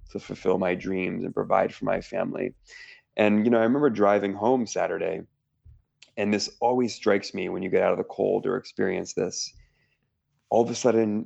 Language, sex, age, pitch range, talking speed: English, male, 30-49, 95-115 Hz, 190 wpm